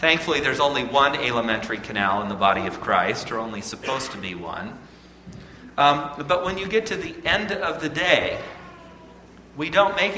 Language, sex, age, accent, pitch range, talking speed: English, male, 40-59, American, 105-150 Hz, 185 wpm